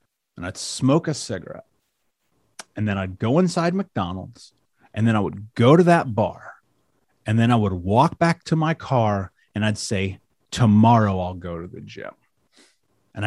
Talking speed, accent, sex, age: 170 wpm, American, male, 30-49